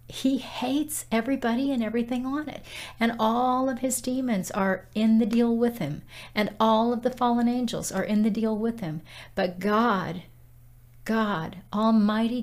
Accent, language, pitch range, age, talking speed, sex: American, English, 180-215 Hz, 50-69, 165 wpm, female